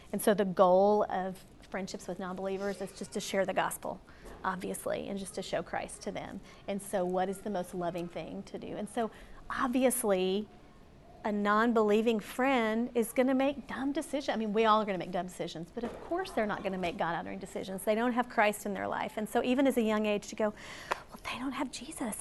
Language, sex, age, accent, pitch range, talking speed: English, female, 30-49, American, 190-225 Hz, 230 wpm